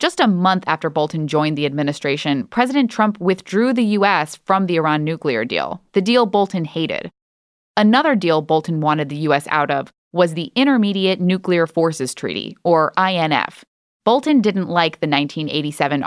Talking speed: 160 wpm